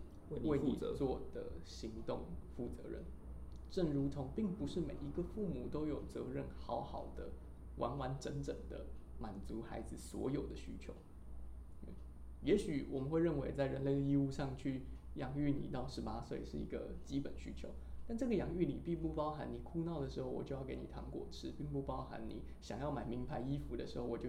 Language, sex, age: Chinese, male, 20-39